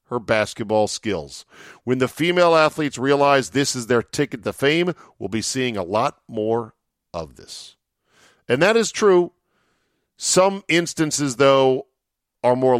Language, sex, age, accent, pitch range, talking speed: English, male, 50-69, American, 100-140 Hz, 145 wpm